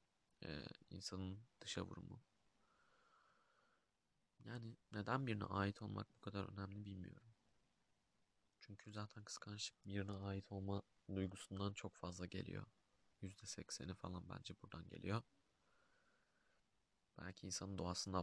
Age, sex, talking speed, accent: 30-49, male, 100 wpm, native